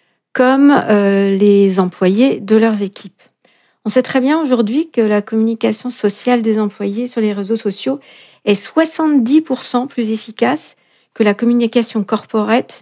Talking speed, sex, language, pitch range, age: 140 wpm, female, French, 205-245 Hz, 50-69